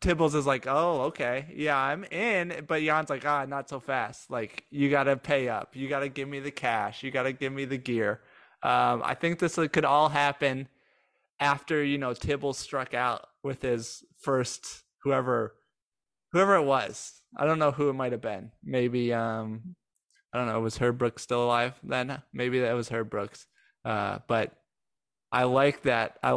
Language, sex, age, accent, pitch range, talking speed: English, male, 20-39, American, 120-145 Hz, 195 wpm